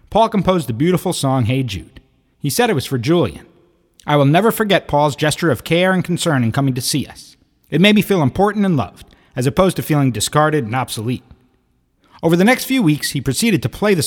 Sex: male